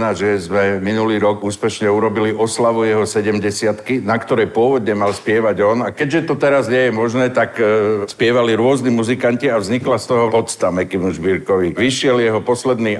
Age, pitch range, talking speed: 60-79, 105-125 Hz, 170 wpm